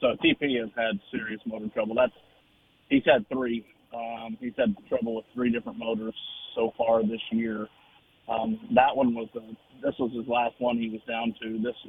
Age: 30-49